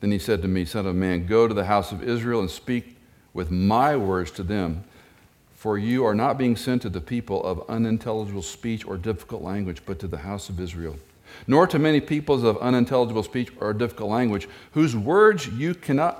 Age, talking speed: 50-69, 210 wpm